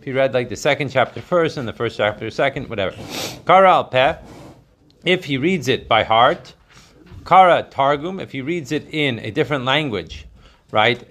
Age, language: 40-59, Hebrew